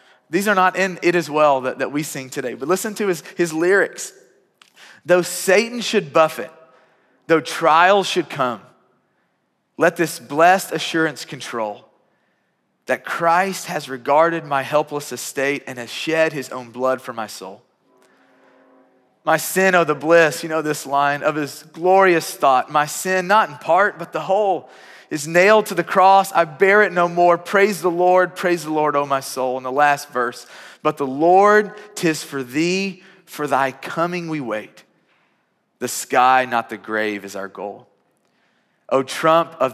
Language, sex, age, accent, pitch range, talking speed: English, male, 30-49, American, 130-175 Hz, 170 wpm